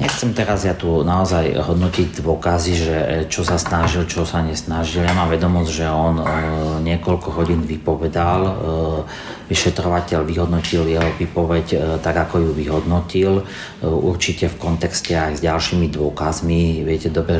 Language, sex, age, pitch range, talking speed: Slovak, male, 40-59, 75-85 Hz, 145 wpm